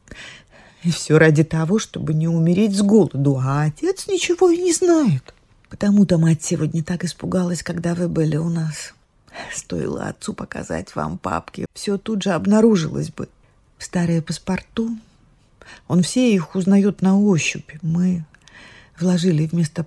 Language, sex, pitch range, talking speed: Russian, female, 160-200 Hz, 140 wpm